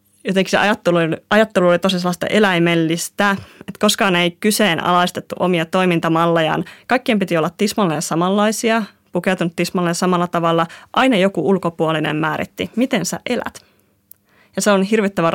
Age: 20-39